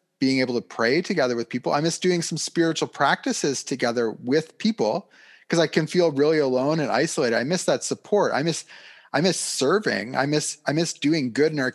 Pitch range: 120-155 Hz